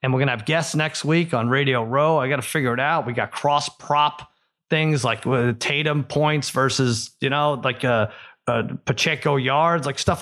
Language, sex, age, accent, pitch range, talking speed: English, male, 30-49, American, 135-170 Hz, 205 wpm